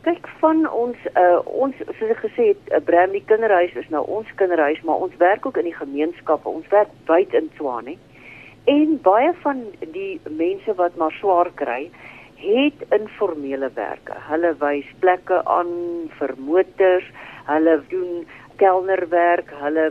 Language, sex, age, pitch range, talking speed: English, female, 50-69, 155-210 Hz, 150 wpm